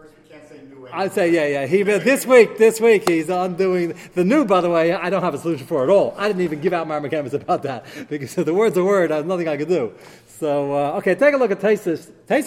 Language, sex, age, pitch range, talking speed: English, male, 40-59, 165-220 Hz, 265 wpm